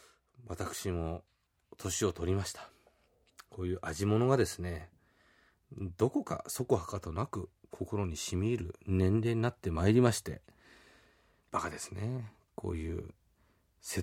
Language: Japanese